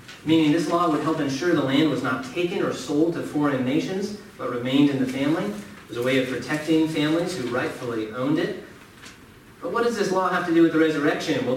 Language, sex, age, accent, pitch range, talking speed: English, male, 40-59, American, 130-160 Hz, 230 wpm